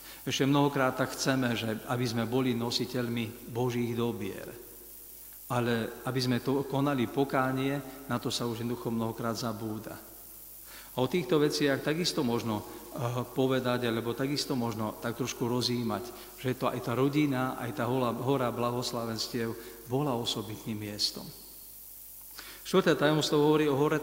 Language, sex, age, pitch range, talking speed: Slovak, male, 50-69, 120-135 Hz, 135 wpm